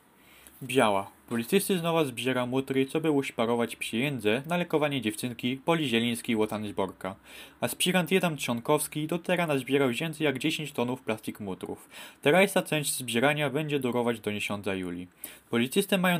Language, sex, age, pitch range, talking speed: Polish, male, 20-39, 120-165 Hz, 150 wpm